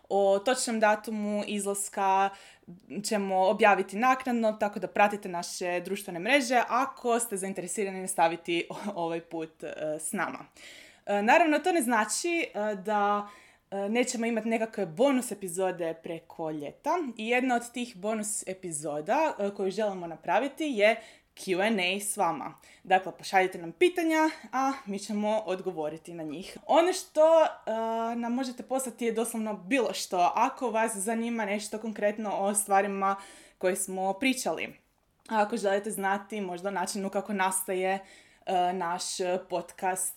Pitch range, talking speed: 190-235 Hz, 140 wpm